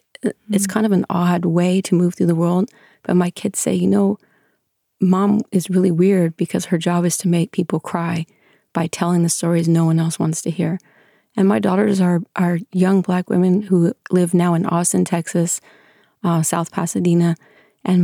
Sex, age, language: female, 30-49, English